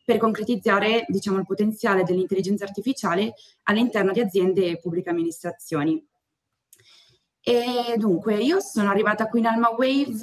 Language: Italian